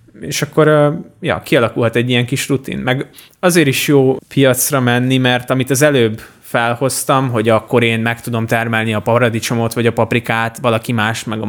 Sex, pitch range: male, 110-130 Hz